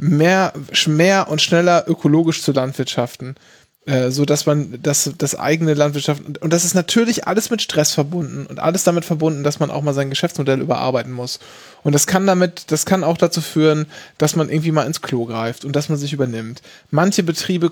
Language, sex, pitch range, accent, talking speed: German, male, 145-195 Hz, German, 195 wpm